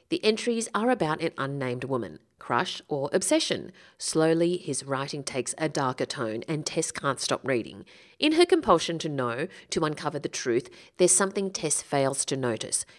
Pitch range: 140-205 Hz